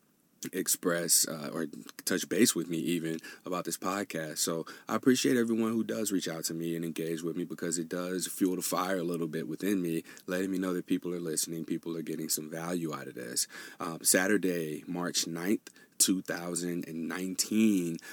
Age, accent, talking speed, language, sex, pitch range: 30-49, American, 185 wpm, English, male, 85-95 Hz